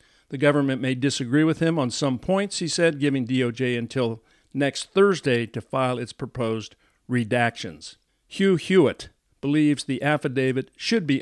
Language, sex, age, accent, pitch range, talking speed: English, male, 50-69, American, 110-130 Hz, 150 wpm